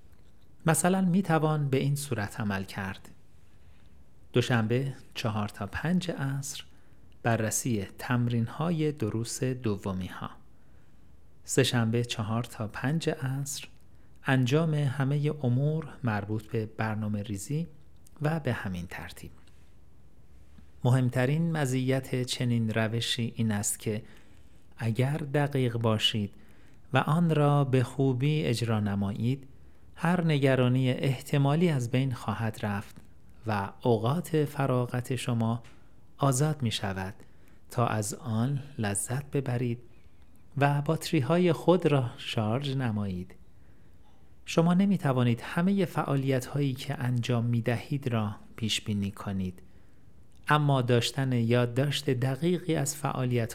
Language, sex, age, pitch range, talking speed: Persian, male, 40-59, 105-140 Hz, 110 wpm